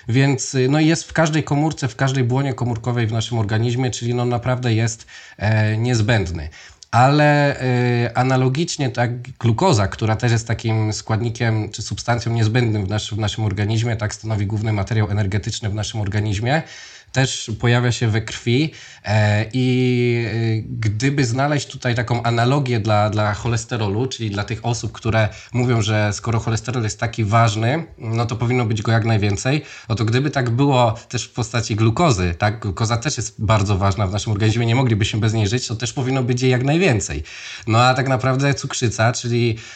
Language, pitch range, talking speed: Polish, 110-125 Hz, 170 wpm